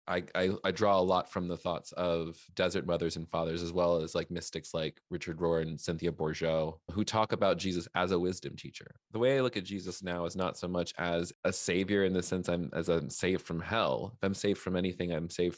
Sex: male